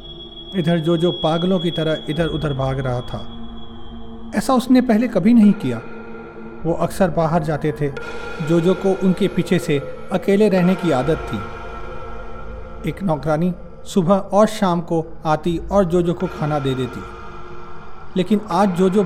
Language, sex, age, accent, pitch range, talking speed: Hindi, male, 40-59, native, 135-185 Hz, 160 wpm